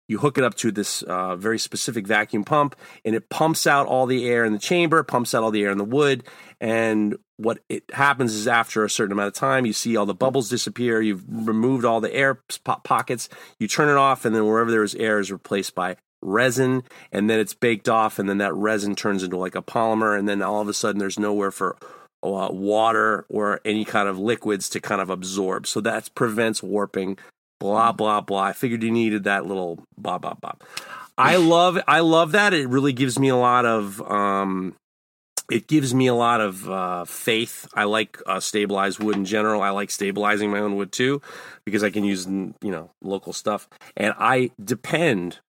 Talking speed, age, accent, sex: 215 wpm, 30-49, American, male